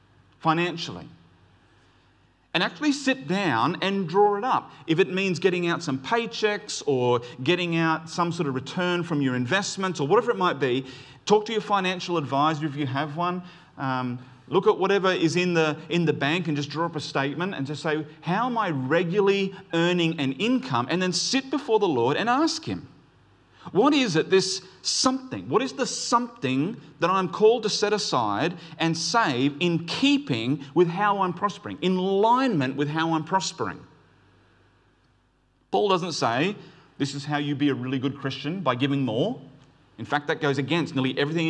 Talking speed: 180 wpm